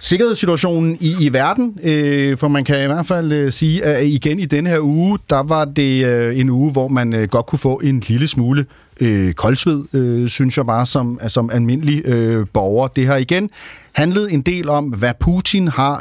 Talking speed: 205 wpm